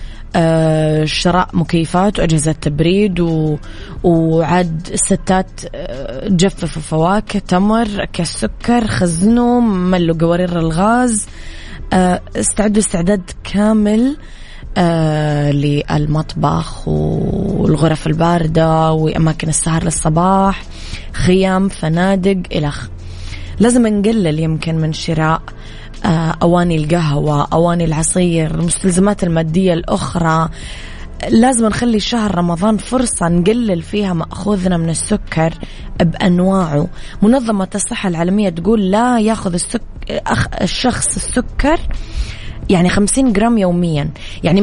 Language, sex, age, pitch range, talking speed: Arabic, female, 20-39, 160-205 Hz, 95 wpm